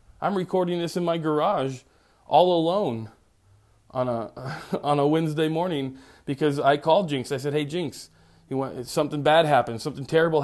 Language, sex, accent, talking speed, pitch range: English, male, American, 165 wpm, 115-155 Hz